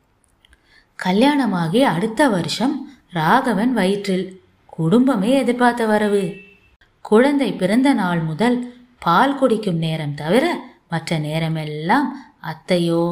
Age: 20-39